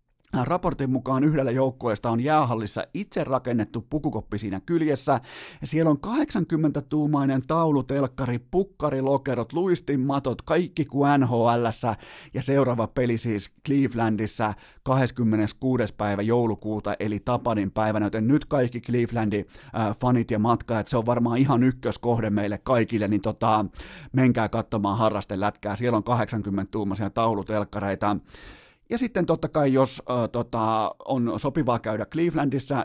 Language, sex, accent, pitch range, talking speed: Finnish, male, native, 110-140 Hz, 120 wpm